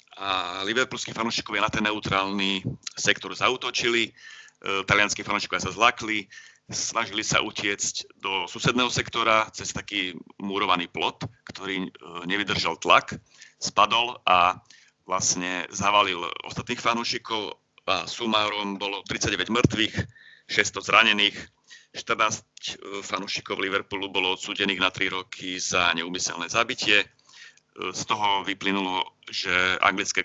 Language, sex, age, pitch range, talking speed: Slovak, male, 30-49, 90-110 Hz, 105 wpm